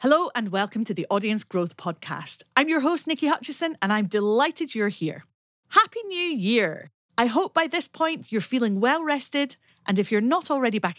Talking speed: 190 wpm